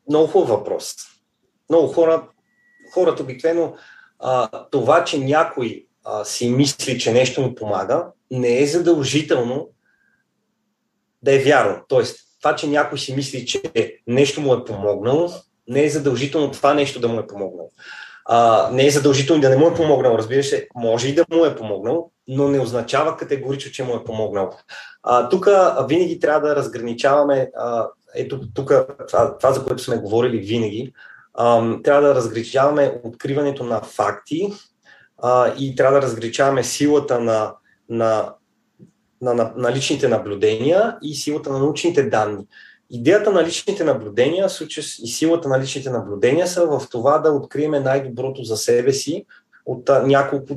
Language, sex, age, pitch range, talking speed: Bulgarian, male, 30-49, 120-155 Hz, 140 wpm